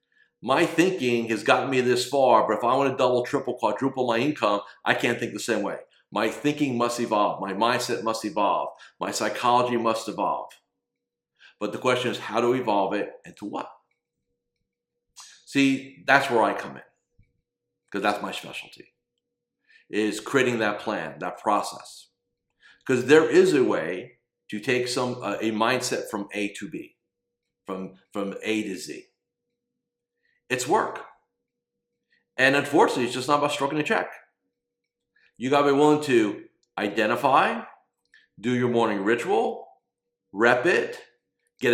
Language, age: English, 50-69